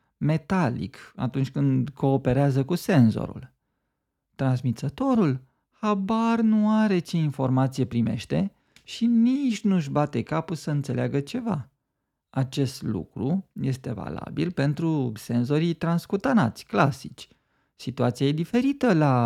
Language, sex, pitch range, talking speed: Romanian, male, 125-180 Hz, 105 wpm